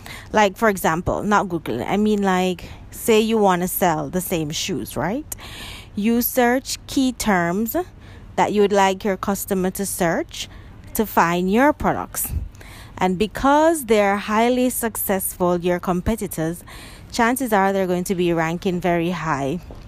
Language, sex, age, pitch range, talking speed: English, female, 20-39, 170-215 Hz, 150 wpm